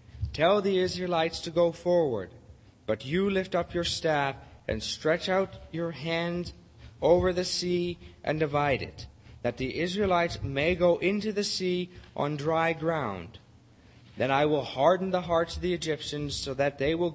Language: English